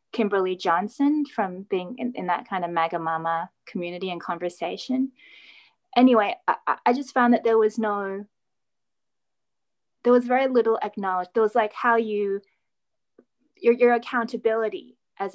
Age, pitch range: 20-39, 185-230 Hz